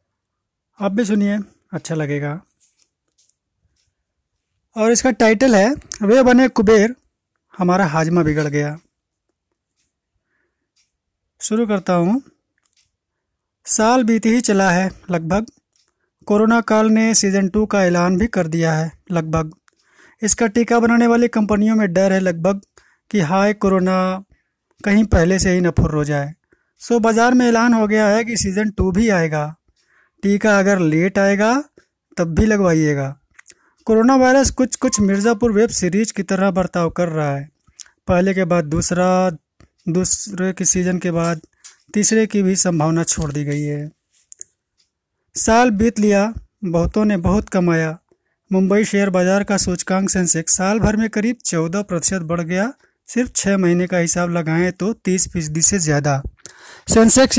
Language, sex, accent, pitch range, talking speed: Hindi, male, native, 175-220 Hz, 145 wpm